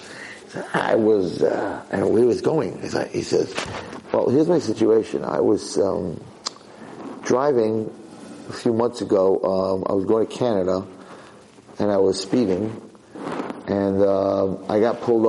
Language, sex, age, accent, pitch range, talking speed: English, male, 50-69, American, 110-130 Hz, 160 wpm